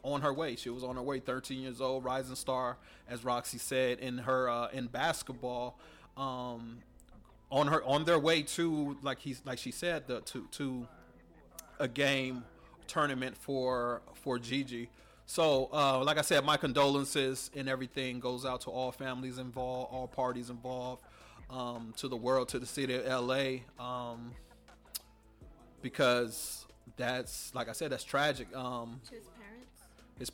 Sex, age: male, 30-49